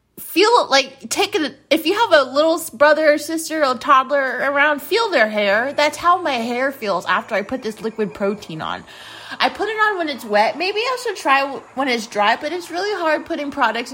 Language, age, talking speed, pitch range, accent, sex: English, 20-39, 210 wpm, 195-285 Hz, American, female